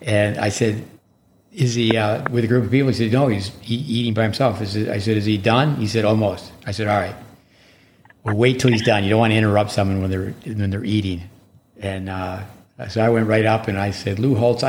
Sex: male